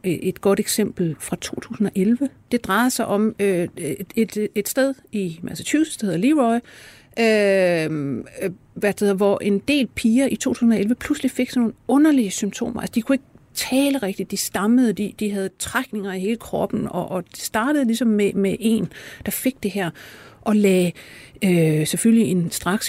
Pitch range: 190-240 Hz